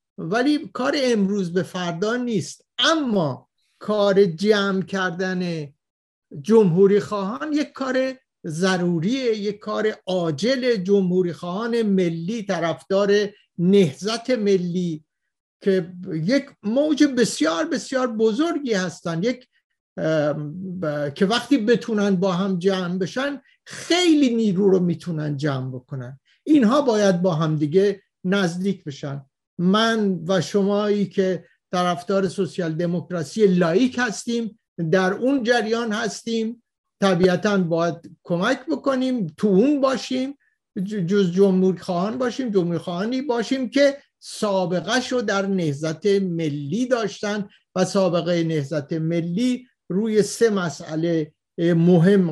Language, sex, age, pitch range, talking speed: Persian, male, 50-69, 175-230 Hz, 110 wpm